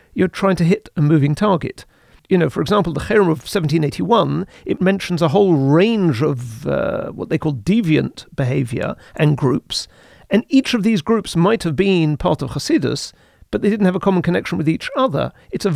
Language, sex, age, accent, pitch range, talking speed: English, male, 40-59, British, 145-185 Hz, 200 wpm